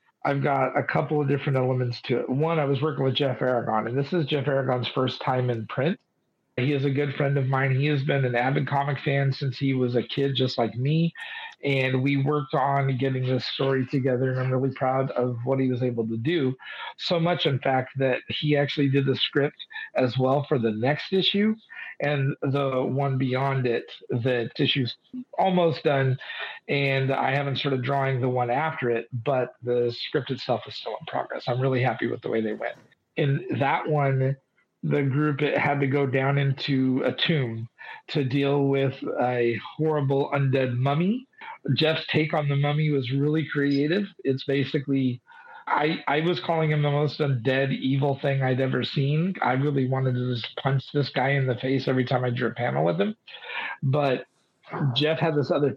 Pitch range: 130-150 Hz